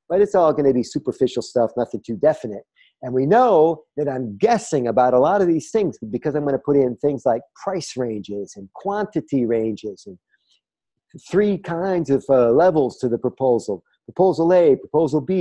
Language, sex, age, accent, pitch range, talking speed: English, male, 50-69, American, 130-175 Hz, 185 wpm